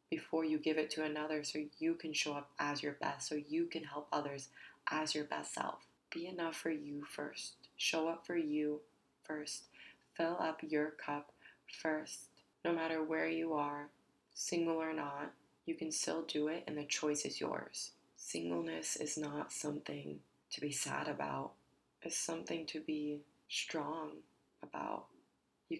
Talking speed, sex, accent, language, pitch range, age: 165 wpm, female, American, English, 145-160 Hz, 20-39